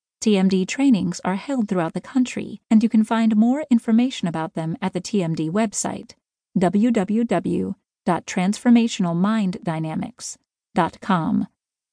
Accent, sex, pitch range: American, female, 185-240 Hz